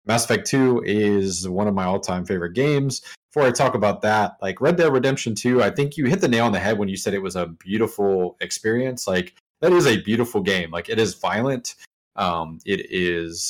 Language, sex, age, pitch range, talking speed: English, male, 30-49, 95-130 Hz, 225 wpm